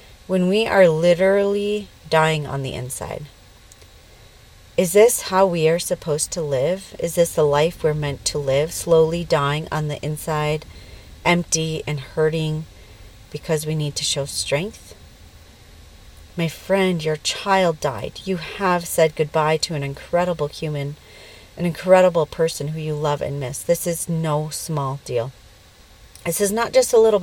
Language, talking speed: English, 155 wpm